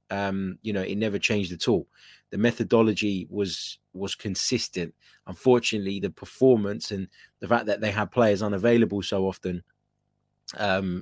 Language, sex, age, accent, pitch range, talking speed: English, male, 20-39, British, 100-130 Hz, 145 wpm